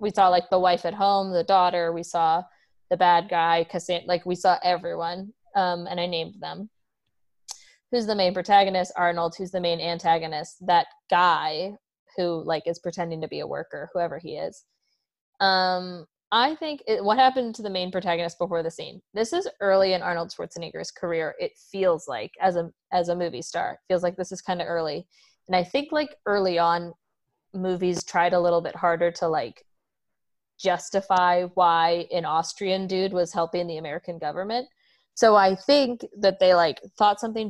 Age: 20-39